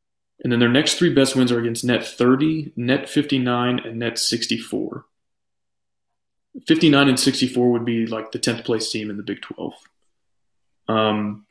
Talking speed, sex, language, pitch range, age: 160 wpm, male, English, 115-130 Hz, 30-49